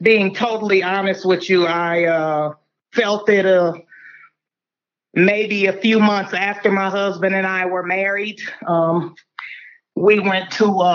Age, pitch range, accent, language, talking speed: 30-49, 185-220 Hz, American, English, 140 wpm